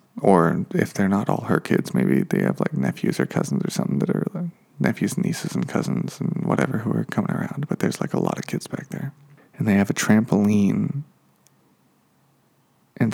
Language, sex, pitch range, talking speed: English, male, 105-150 Hz, 205 wpm